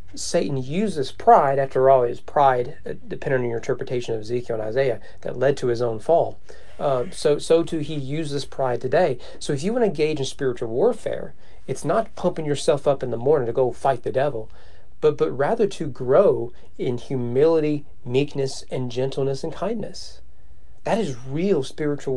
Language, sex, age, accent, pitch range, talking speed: English, male, 40-59, American, 125-155 Hz, 180 wpm